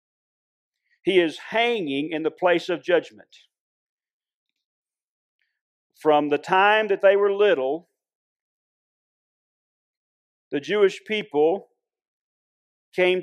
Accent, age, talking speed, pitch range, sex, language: American, 40-59, 85 wpm, 160-220 Hz, male, English